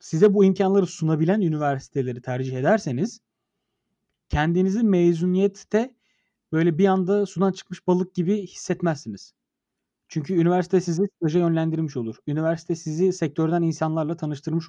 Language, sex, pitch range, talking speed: Turkish, male, 140-190 Hz, 115 wpm